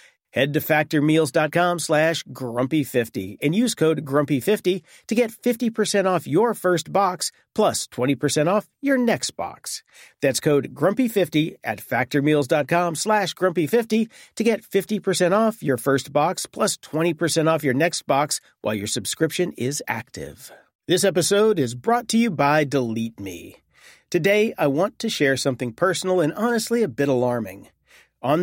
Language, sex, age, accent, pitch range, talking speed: English, male, 40-59, American, 130-180 Hz, 145 wpm